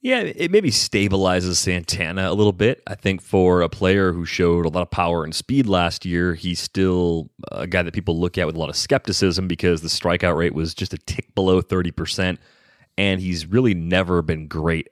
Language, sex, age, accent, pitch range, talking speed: English, male, 30-49, American, 85-95 Hz, 210 wpm